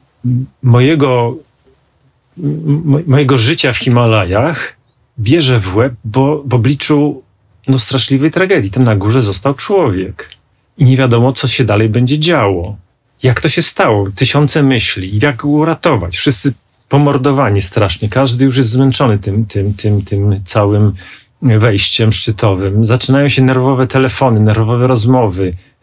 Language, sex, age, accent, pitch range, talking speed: Polish, male, 40-59, native, 110-140 Hz, 130 wpm